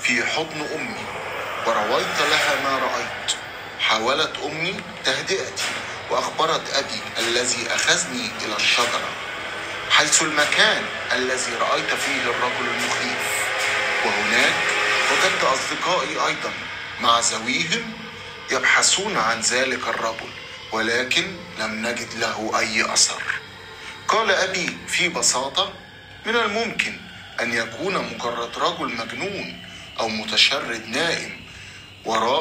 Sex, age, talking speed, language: male, 30-49, 100 wpm, Arabic